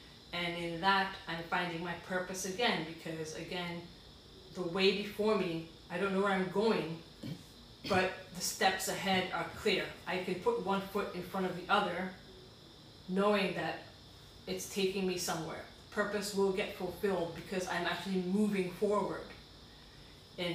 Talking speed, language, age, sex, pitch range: 150 wpm, English, 30-49, female, 175-200 Hz